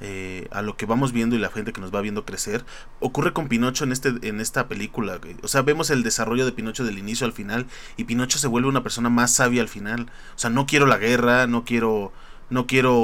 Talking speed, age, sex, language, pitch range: 250 wpm, 20-39, male, Spanish, 120-150 Hz